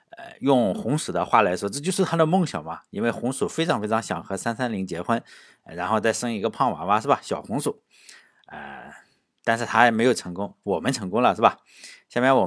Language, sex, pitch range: Chinese, male, 105-175 Hz